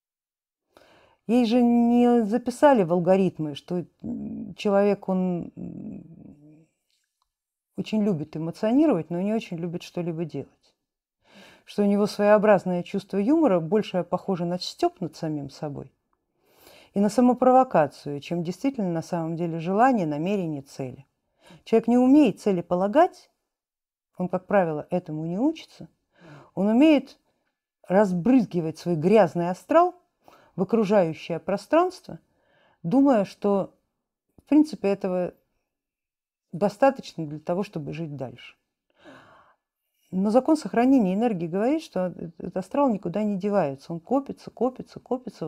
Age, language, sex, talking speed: 50-69, Russian, female, 115 wpm